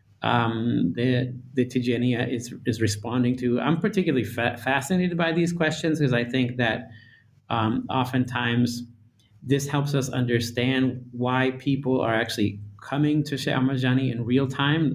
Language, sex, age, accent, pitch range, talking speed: English, male, 30-49, American, 110-125 Hz, 135 wpm